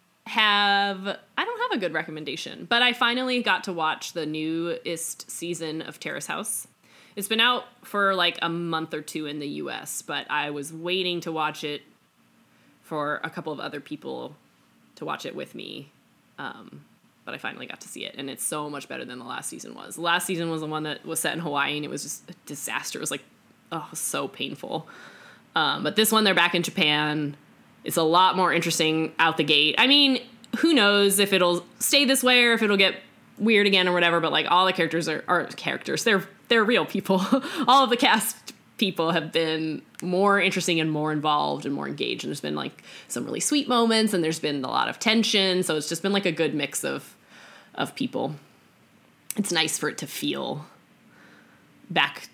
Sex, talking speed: female, 210 wpm